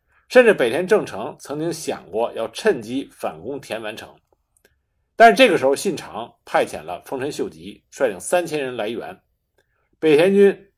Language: Chinese